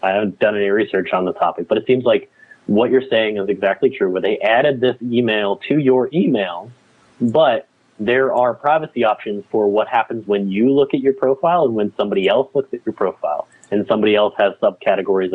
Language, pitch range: English, 100-160 Hz